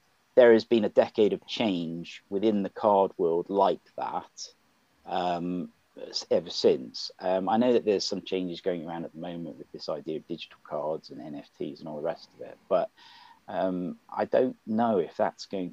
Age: 40-59